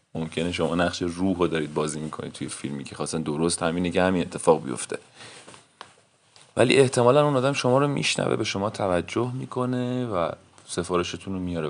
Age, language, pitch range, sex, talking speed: 30-49, Persian, 80-115 Hz, male, 170 wpm